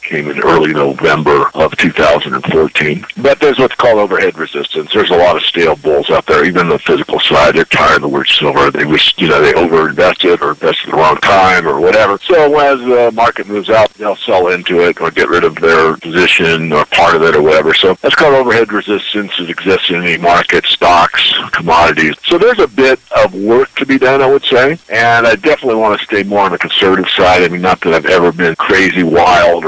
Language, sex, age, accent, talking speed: English, male, 50-69, American, 220 wpm